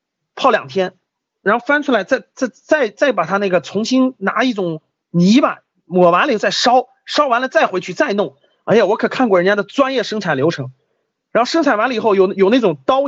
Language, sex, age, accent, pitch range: Chinese, male, 30-49, native, 175-260 Hz